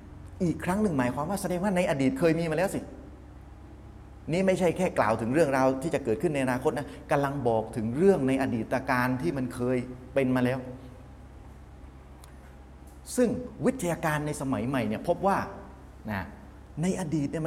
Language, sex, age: Thai, male, 30-49